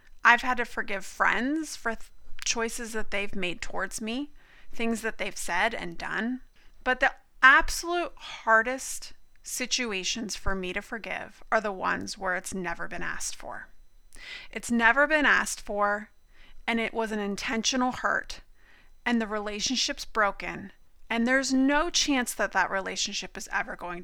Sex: female